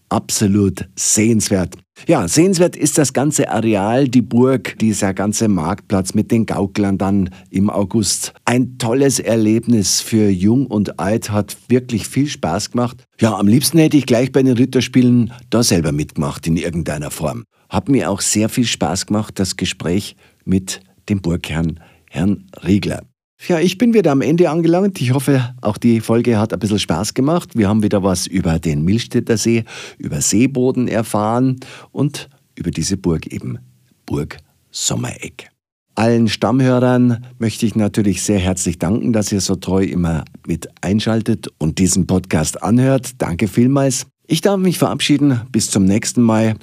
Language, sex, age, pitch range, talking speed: German, male, 50-69, 95-125 Hz, 160 wpm